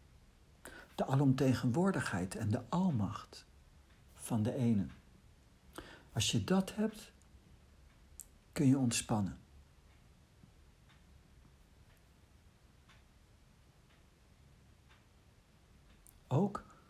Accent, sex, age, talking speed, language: Dutch, male, 60-79, 55 wpm, Dutch